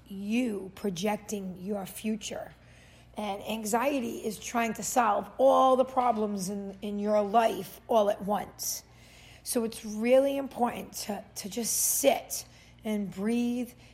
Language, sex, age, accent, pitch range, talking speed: English, female, 40-59, American, 200-235 Hz, 130 wpm